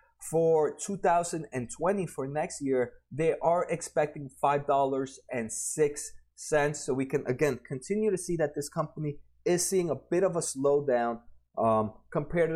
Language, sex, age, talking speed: English, male, 30-49, 155 wpm